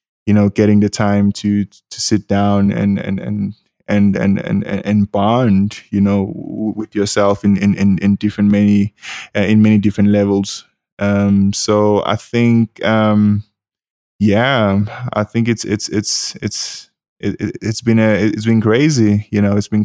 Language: English